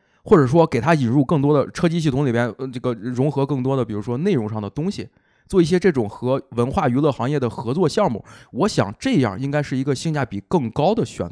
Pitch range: 115-155 Hz